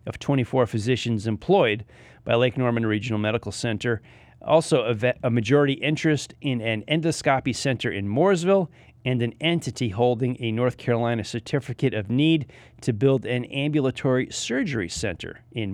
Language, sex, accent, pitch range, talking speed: English, male, American, 115-150 Hz, 145 wpm